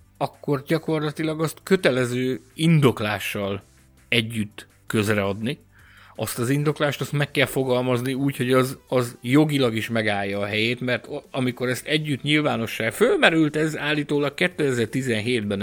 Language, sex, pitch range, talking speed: Hungarian, male, 110-145 Hz, 125 wpm